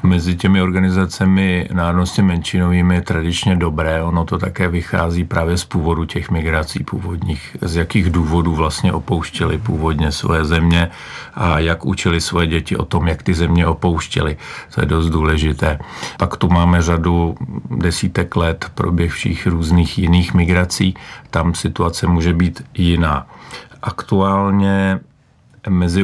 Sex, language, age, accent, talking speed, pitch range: male, Czech, 50-69, native, 135 wpm, 85-95 Hz